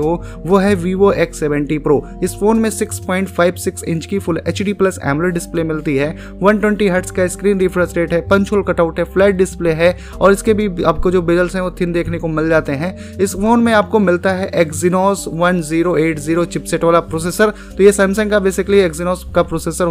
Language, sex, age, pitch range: Hindi, male, 20-39, 170-195 Hz